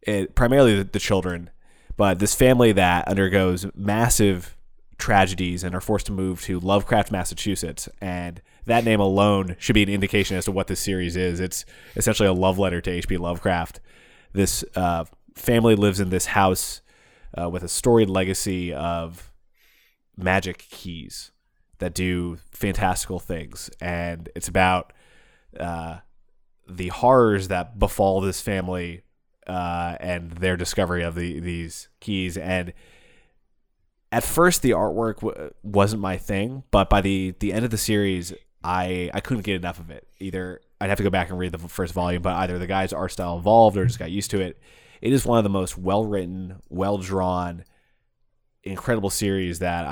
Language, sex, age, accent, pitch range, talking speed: English, male, 20-39, American, 90-100 Hz, 165 wpm